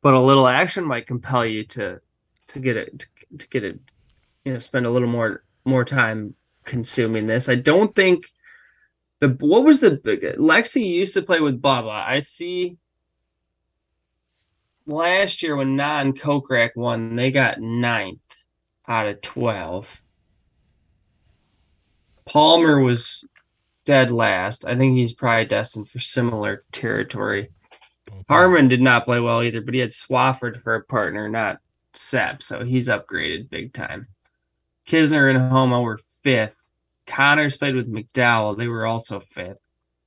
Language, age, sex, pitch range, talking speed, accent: English, 20-39, male, 110-135 Hz, 145 wpm, American